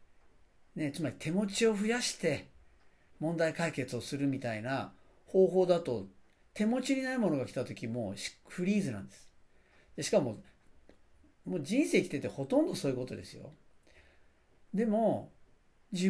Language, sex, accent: Japanese, male, native